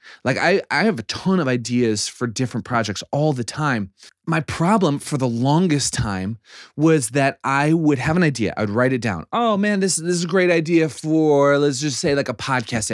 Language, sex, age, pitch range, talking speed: English, male, 20-39, 110-145 Hz, 215 wpm